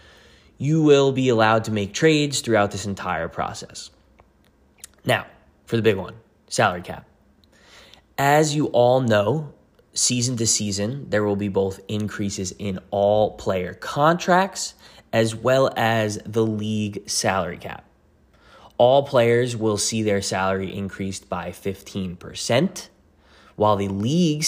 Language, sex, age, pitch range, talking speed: English, male, 20-39, 100-120 Hz, 130 wpm